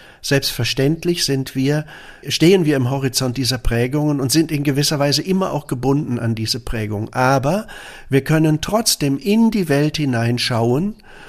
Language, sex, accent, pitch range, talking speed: German, male, German, 130-155 Hz, 150 wpm